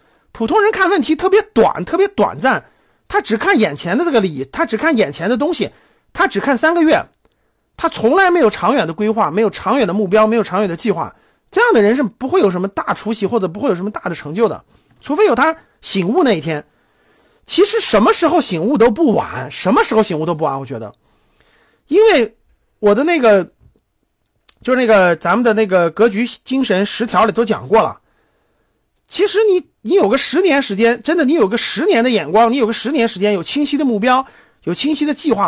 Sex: male